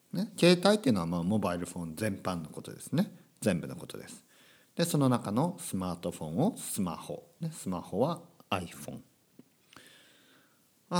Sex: male